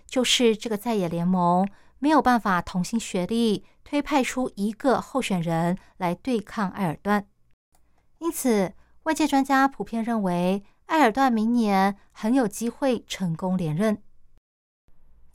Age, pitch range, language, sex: 20-39, 185-240 Hz, Chinese, female